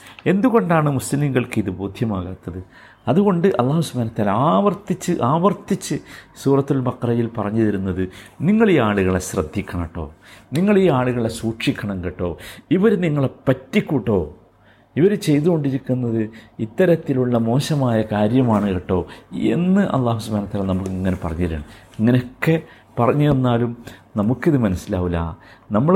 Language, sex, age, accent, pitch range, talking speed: Malayalam, male, 50-69, native, 100-140 Hz, 105 wpm